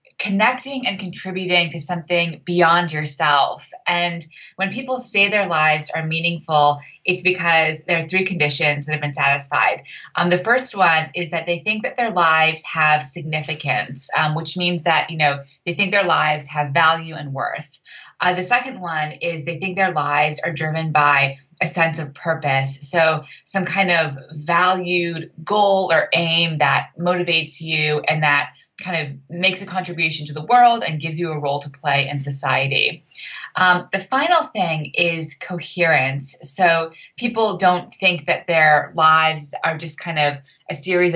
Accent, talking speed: American, 170 wpm